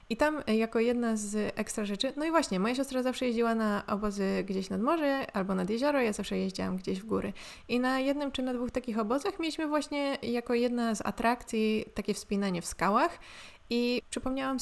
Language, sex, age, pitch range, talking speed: Polish, female, 20-39, 205-255 Hz, 195 wpm